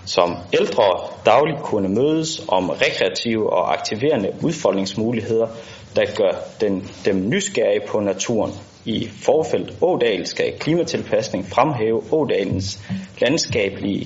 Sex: male